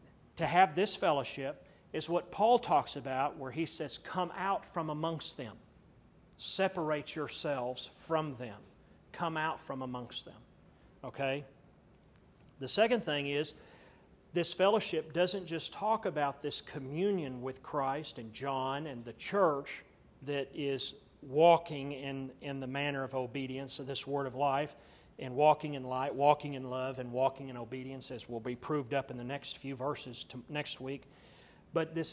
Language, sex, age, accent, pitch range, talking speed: English, male, 40-59, American, 130-155 Hz, 160 wpm